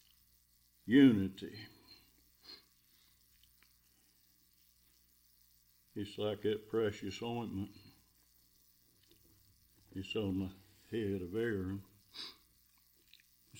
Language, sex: English, male